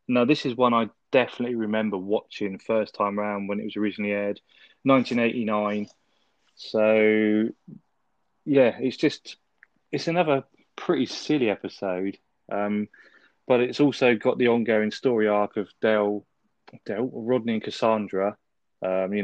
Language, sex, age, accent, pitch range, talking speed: English, male, 20-39, British, 100-115 Hz, 135 wpm